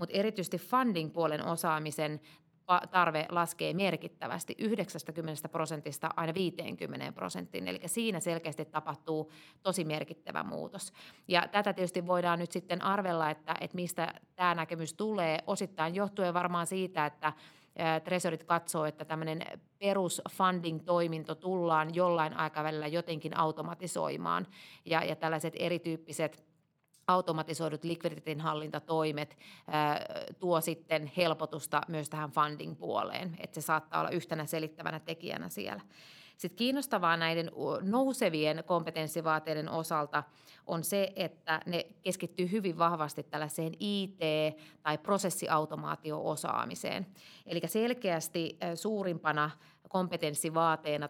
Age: 30-49